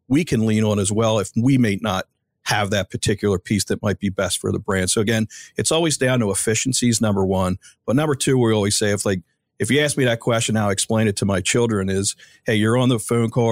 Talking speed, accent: 255 wpm, American